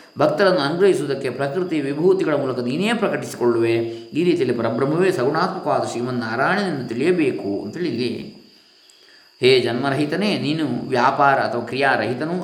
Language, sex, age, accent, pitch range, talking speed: Kannada, male, 20-39, native, 125-185 Hz, 95 wpm